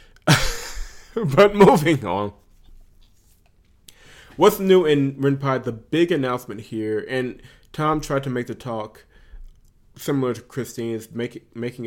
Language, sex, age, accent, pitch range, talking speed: English, male, 30-49, American, 95-120 Hz, 110 wpm